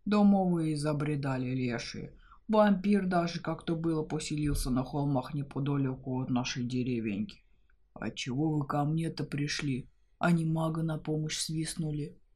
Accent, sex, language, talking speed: native, female, Russian, 125 wpm